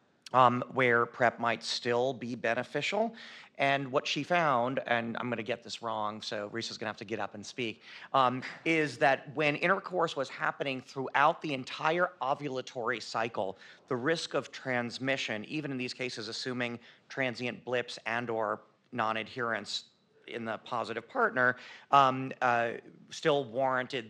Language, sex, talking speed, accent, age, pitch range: English, male, 150 wpm, American, 40-59, 115-135 Hz